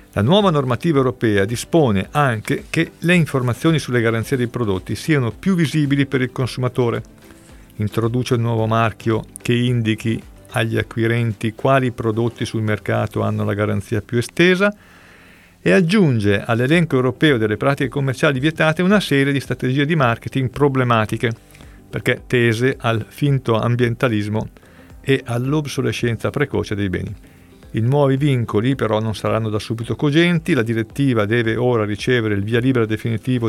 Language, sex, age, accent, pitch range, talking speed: Italian, male, 50-69, native, 110-140 Hz, 140 wpm